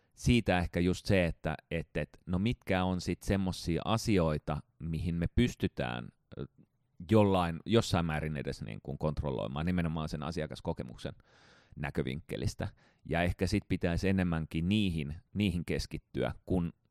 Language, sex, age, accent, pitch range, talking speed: Finnish, male, 30-49, native, 75-95 Hz, 125 wpm